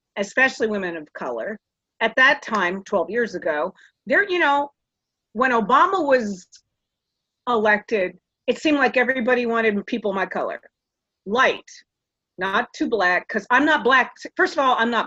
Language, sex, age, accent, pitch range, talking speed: English, female, 40-59, American, 200-255 Hz, 150 wpm